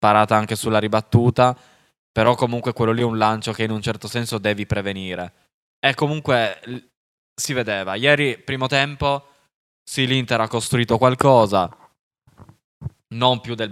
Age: 10-29